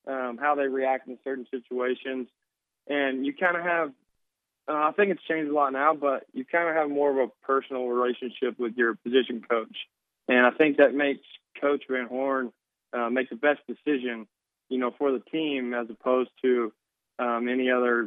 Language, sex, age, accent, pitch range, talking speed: English, male, 20-39, American, 120-145 Hz, 185 wpm